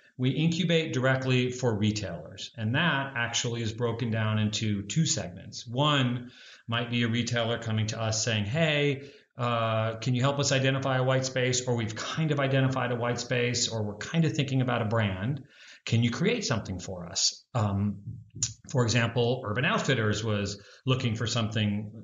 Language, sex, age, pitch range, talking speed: English, male, 40-59, 110-135 Hz, 175 wpm